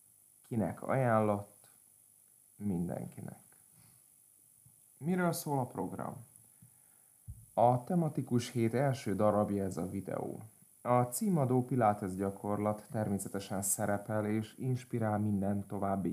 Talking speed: 95 wpm